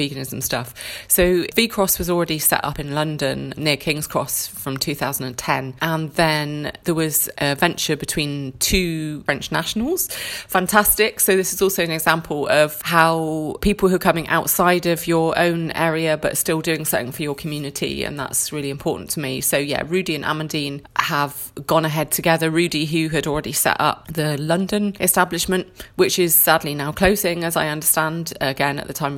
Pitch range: 145-175 Hz